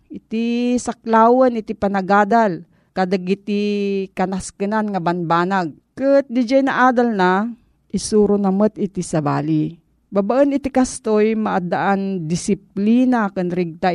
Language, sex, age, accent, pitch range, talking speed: Filipino, female, 40-59, native, 175-225 Hz, 110 wpm